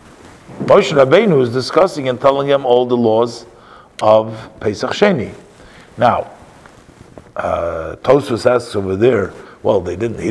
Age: 50-69